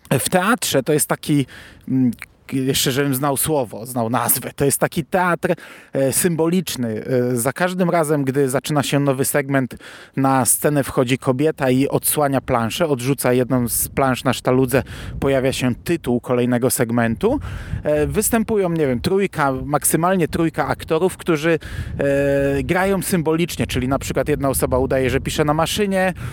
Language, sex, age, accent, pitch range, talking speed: Polish, male, 30-49, native, 130-165 Hz, 140 wpm